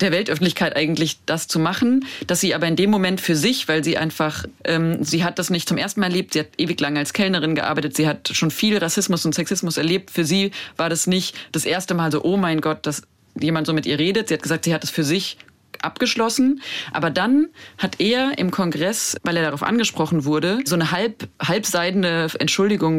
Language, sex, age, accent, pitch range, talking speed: German, female, 30-49, German, 150-185 Hz, 220 wpm